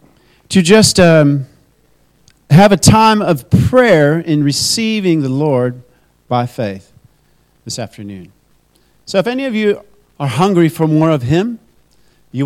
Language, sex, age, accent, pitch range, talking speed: English, male, 40-59, American, 130-175 Hz, 135 wpm